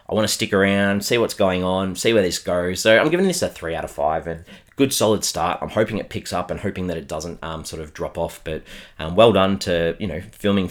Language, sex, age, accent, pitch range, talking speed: English, male, 30-49, Australian, 85-105 Hz, 270 wpm